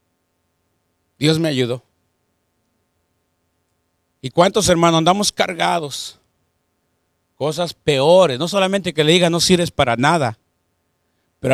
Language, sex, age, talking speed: English, male, 50-69, 105 wpm